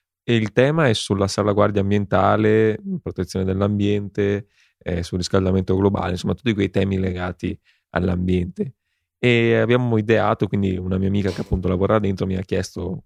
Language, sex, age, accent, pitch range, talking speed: Italian, male, 20-39, native, 95-105 Hz, 150 wpm